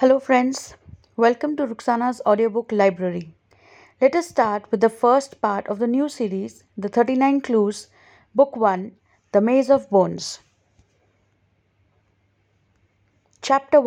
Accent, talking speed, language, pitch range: Indian, 120 wpm, English, 190-265 Hz